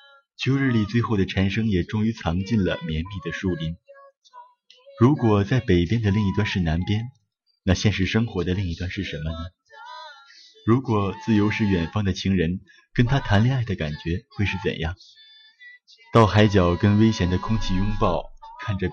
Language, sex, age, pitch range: Chinese, male, 30-49, 95-140 Hz